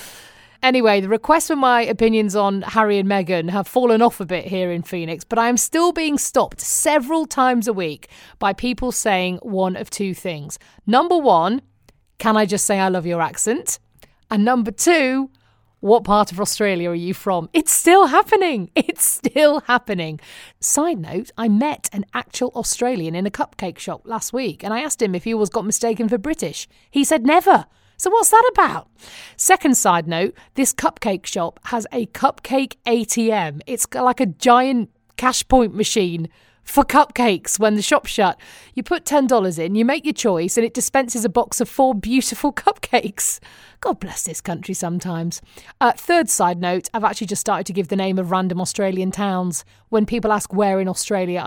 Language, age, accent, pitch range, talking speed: English, 30-49, British, 195-270 Hz, 185 wpm